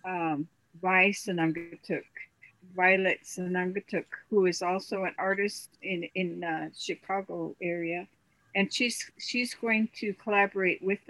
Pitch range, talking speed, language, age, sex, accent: 175-205 Hz, 120 wpm, English, 60-79, female, American